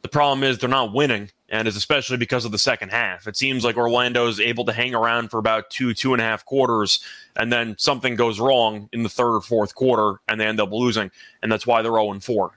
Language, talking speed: English, 255 wpm